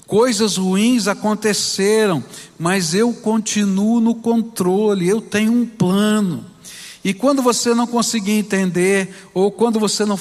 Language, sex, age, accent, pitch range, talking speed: Portuguese, male, 60-79, Brazilian, 170-220 Hz, 130 wpm